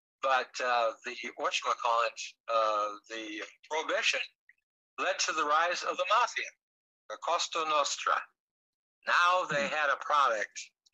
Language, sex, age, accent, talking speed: English, male, 60-79, American, 120 wpm